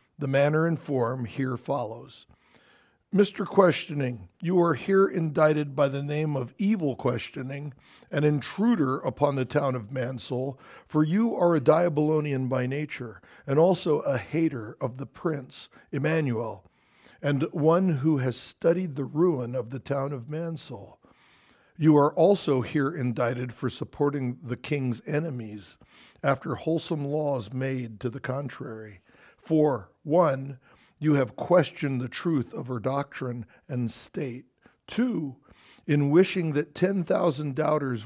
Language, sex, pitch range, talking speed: English, male, 125-160 Hz, 135 wpm